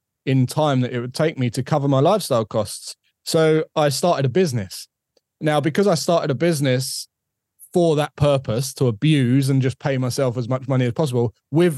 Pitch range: 125-145 Hz